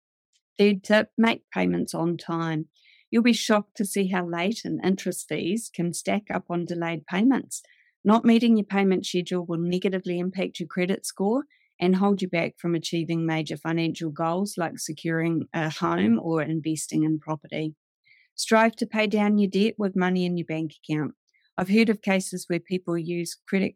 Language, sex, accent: English, female, Australian